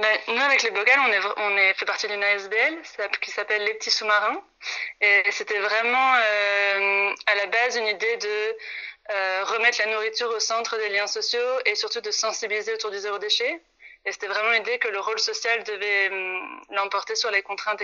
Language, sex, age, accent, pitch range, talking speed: French, female, 20-39, French, 200-230 Hz, 200 wpm